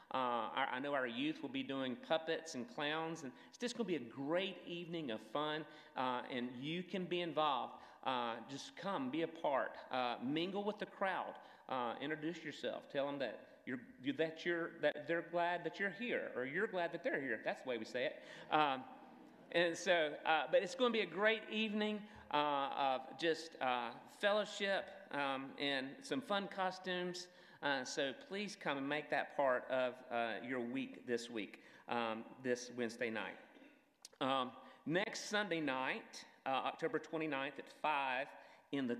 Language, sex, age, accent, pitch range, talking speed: English, male, 40-59, American, 130-180 Hz, 180 wpm